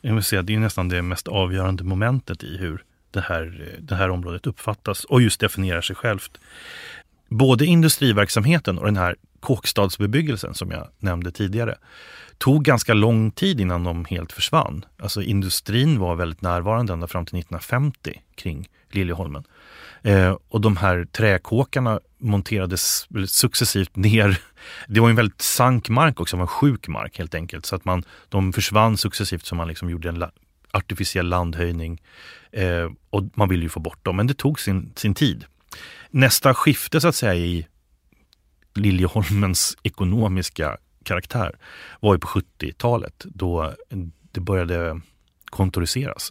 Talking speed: 140 wpm